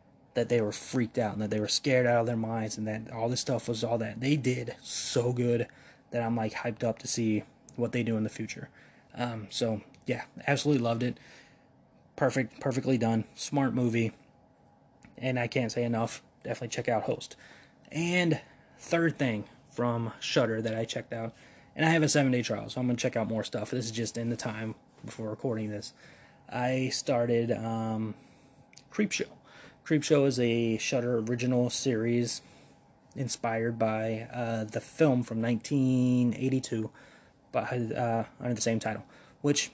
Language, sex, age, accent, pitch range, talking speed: English, male, 20-39, American, 115-130 Hz, 170 wpm